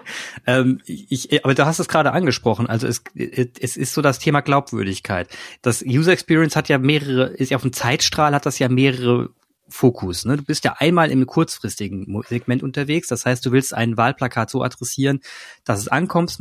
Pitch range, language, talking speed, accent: 115-140 Hz, German, 190 wpm, German